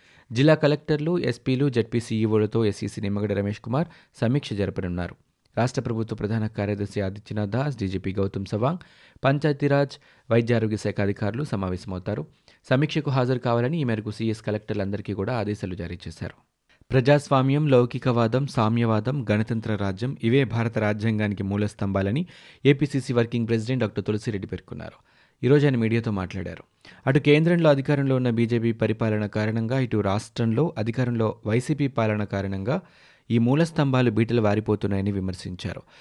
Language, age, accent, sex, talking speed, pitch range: Telugu, 30-49, native, male, 120 wpm, 105-130 Hz